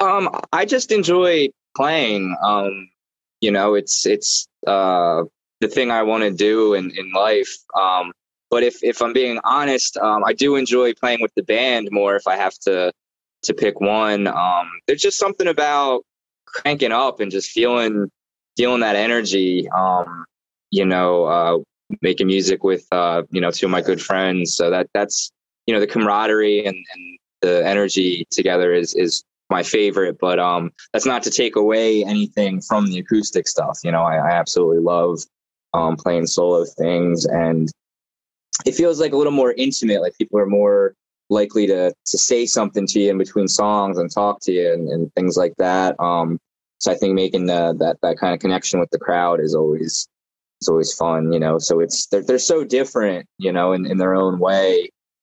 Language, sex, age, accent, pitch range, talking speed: English, male, 20-39, American, 85-115 Hz, 190 wpm